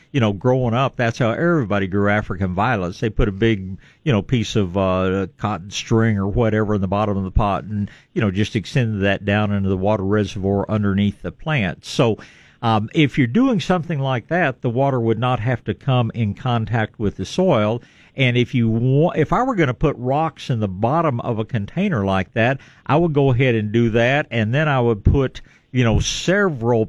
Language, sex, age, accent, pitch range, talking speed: English, male, 50-69, American, 105-135 Hz, 215 wpm